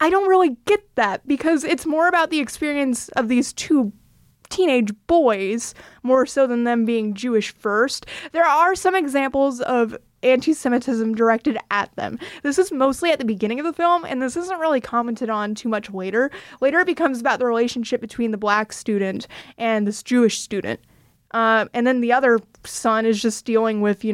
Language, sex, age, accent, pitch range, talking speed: English, female, 20-39, American, 215-275 Hz, 185 wpm